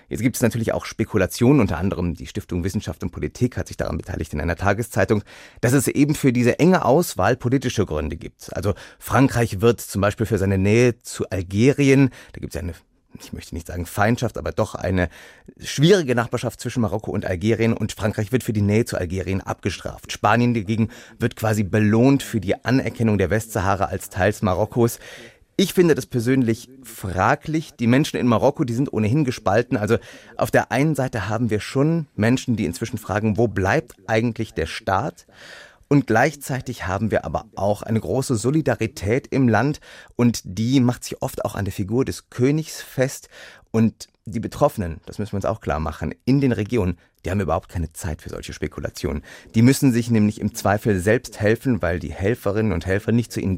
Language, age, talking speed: German, 30-49, 190 wpm